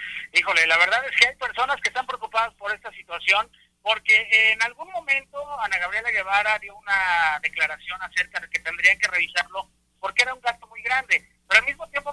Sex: male